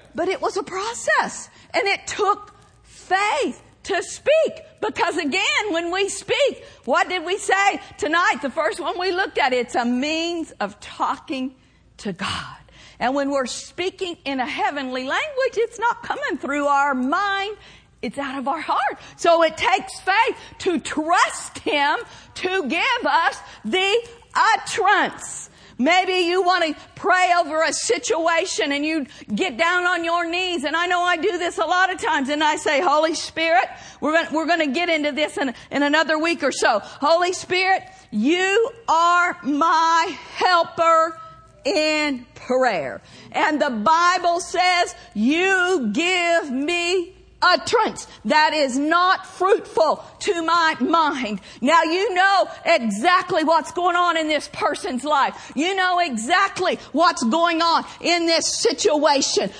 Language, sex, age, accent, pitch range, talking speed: English, female, 50-69, American, 305-370 Hz, 150 wpm